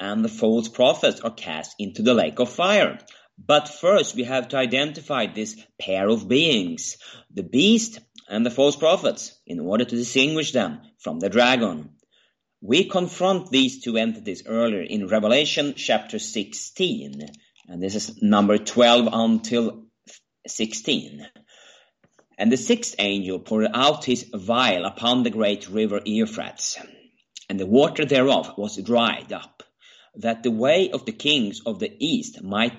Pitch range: 110-145 Hz